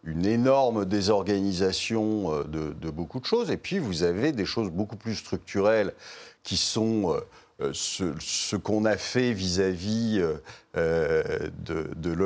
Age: 50-69